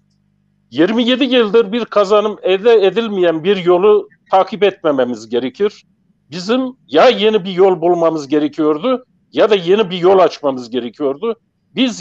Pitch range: 170-230 Hz